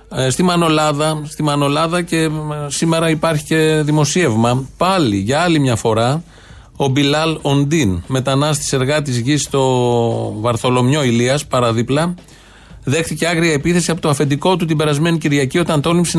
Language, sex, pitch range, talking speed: Greek, male, 125-165 Hz, 130 wpm